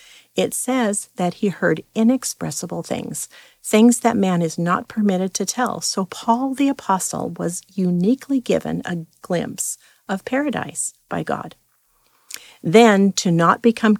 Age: 50-69